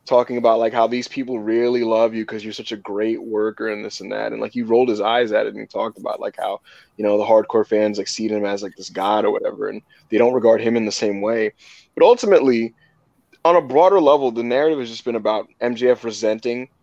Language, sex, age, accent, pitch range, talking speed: English, male, 20-39, American, 115-155 Hz, 250 wpm